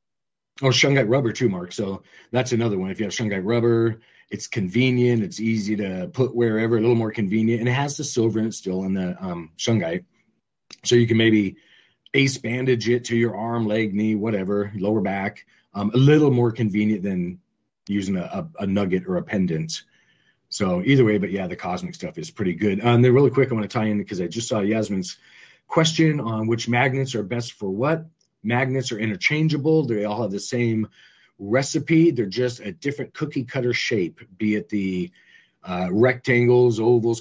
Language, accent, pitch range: English, American, 105-125 Hz